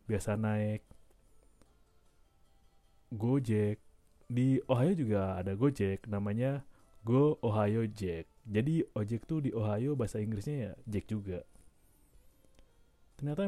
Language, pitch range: Indonesian, 95-115 Hz